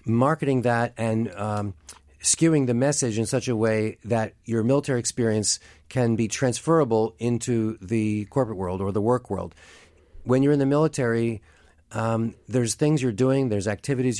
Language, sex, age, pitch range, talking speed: English, male, 40-59, 105-125 Hz, 160 wpm